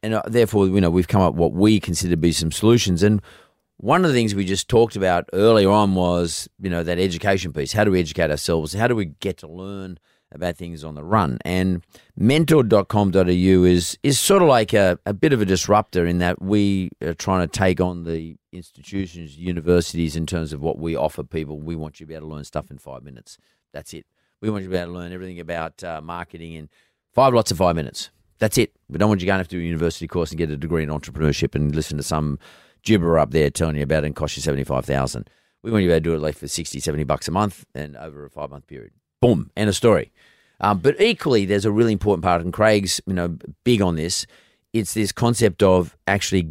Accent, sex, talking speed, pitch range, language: Australian, male, 240 wpm, 80-100 Hz, English